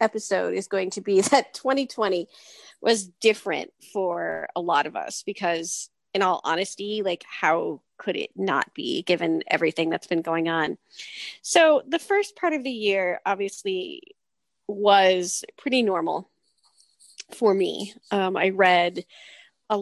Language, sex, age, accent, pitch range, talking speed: English, female, 30-49, American, 180-265 Hz, 140 wpm